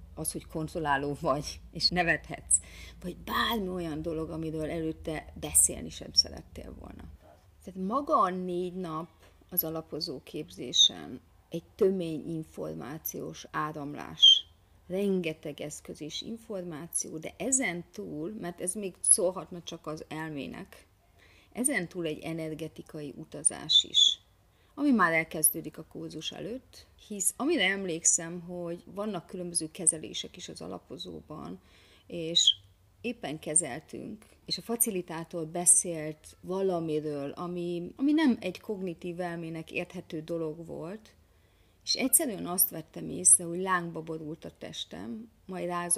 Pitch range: 145-180 Hz